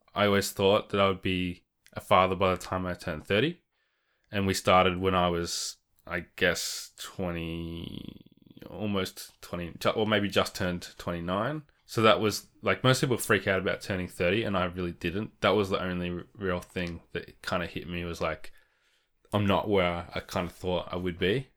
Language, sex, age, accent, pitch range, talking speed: English, male, 20-39, Australian, 85-95 Hz, 190 wpm